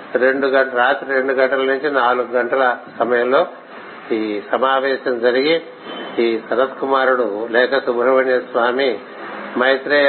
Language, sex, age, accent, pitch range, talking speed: Telugu, male, 60-79, native, 125-140 Hz, 105 wpm